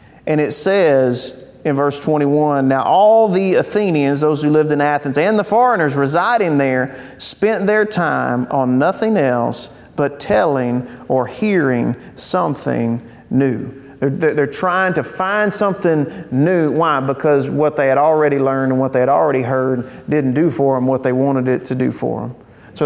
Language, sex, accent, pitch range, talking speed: English, male, American, 135-185 Hz, 175 wpm